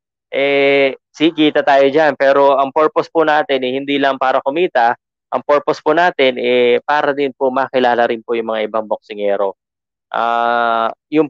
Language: Filipino